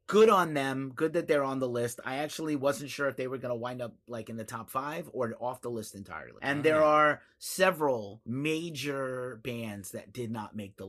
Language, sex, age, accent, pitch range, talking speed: English, male, 30-49, American, 105-135 Hz, 225 wpm